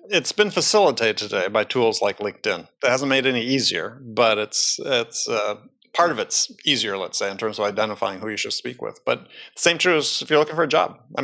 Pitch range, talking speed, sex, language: 115-155 Hz, 225 wpm, male, English